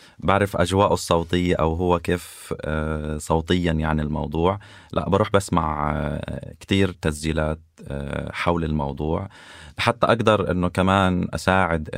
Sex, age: male, 20-39